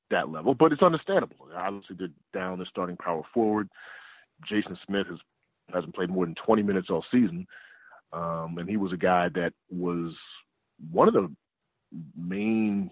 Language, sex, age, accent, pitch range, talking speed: English, male, 40-59, American, 90-120 Hz, 165 wpm